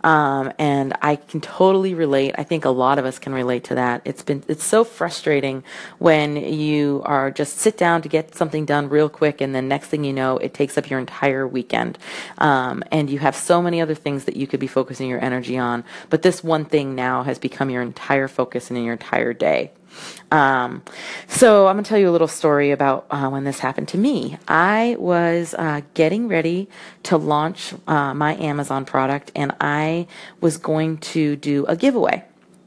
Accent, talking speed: American, 205 wpm